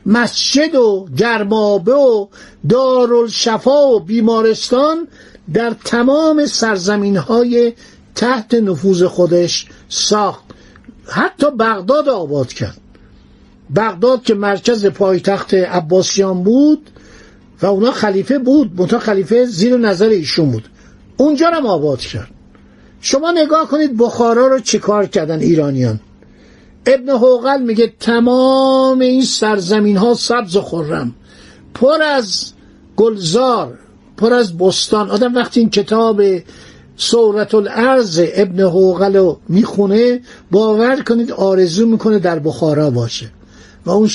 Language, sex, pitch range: Persian, male, 185-245 Hz